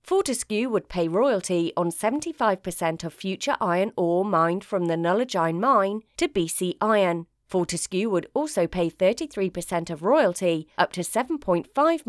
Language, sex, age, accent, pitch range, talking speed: English, female, 30-49, British, 170-225 Hz, 140 wpm